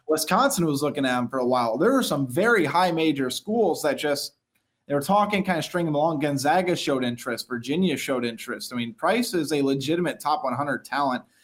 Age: 20-39